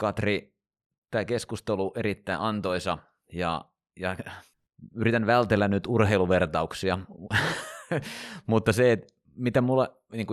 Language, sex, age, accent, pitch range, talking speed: Finnish, male, 30-49, native, 80-105 Hz, 95 wpm